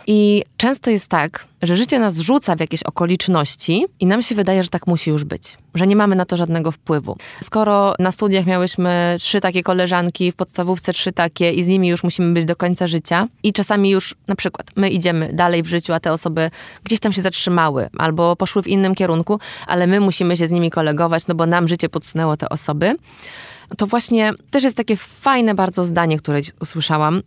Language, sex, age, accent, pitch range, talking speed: Polish, female, 20-39, native, 165-210 Hz, 205 wpm